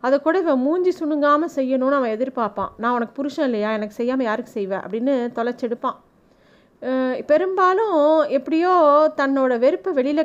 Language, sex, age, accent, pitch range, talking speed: Tamil, female, 30-49, native, 240-290 Hz, 135 wpm